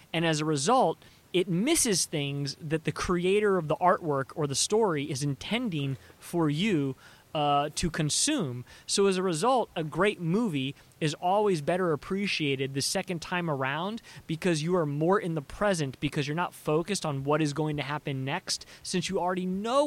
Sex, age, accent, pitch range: male, 30-49, American, 150-195 Hz